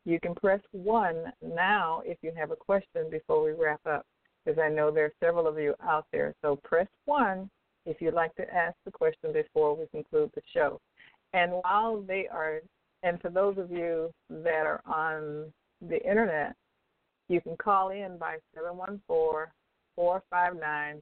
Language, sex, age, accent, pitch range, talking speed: English, female, 60-79, American, 155-225 Hz, 170 wpm